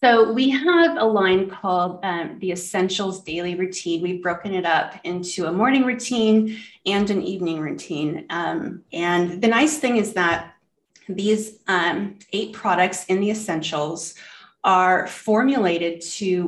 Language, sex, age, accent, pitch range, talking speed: English, female, 30-49, American, 175-210 Hz, 145 wpm